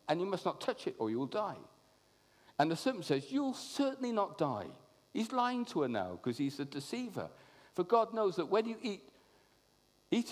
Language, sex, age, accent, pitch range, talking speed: English, male, 50-69, British, 130-185 Hz, 210 wpm